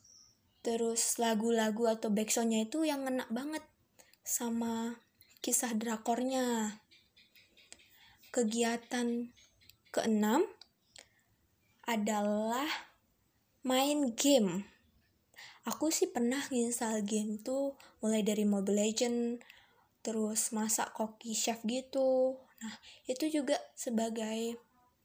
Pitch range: 220-260 Hz